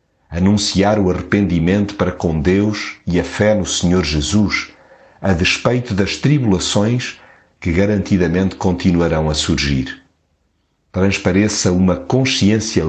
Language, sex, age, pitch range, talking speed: Portuguese, male, 50-69, 85-105 Hz, 110 wpm